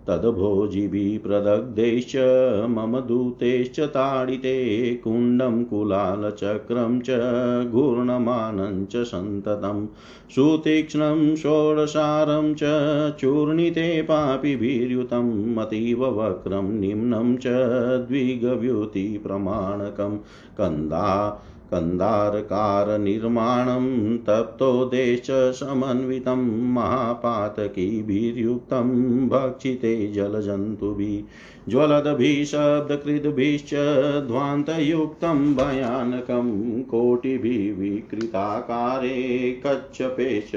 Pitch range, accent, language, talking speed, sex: 105-130 Hz, native, Hindi, 40 wpm, male